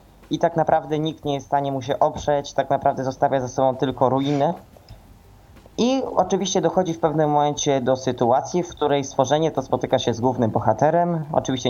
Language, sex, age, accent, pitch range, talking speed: Polish, male, 20-39, native, 125-155 Hz, 185 wpm